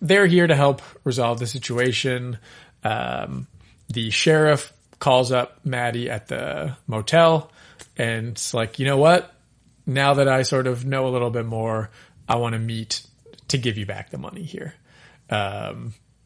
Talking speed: 160 wpm